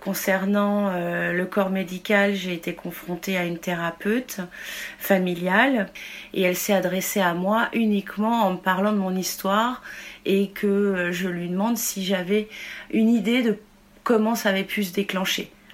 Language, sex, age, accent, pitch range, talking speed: French, female, 30-49, French, 175-205 Hz, 155 wpm